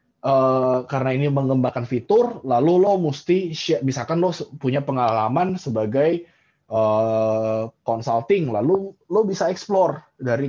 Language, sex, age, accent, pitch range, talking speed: Indonesian, male, 20-39, native, 120-160 Hz, 120 wpm